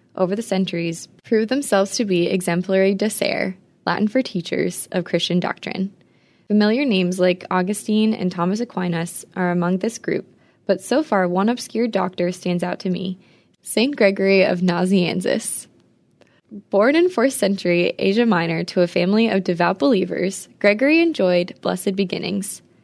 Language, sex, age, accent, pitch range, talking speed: English, female, 20-39, American, 175-210 Hz, 145 wpm